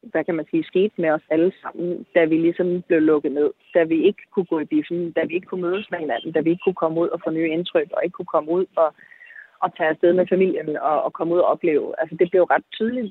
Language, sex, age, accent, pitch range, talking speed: Danish, female, 30-49, native, 165-200 Hz, 285 wpm